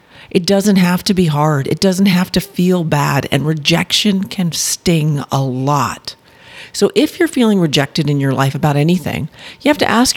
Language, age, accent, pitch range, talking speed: English, 40-59, American, 140-195 Hz, 190 wpm